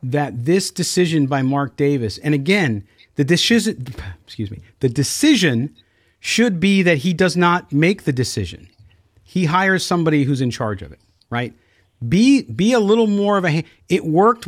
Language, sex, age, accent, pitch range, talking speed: English, male, 40-59, American, 130-210 Hz, 170 wpm